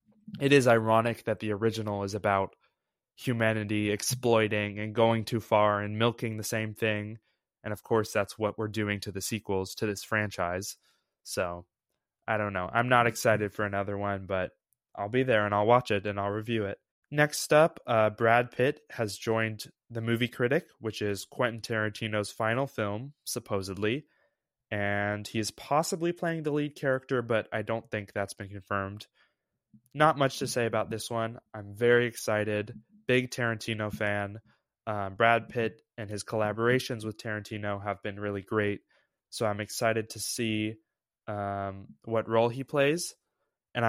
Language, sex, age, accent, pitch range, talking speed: English, male, 20-39, American, 105-115 Hz, 165 wpm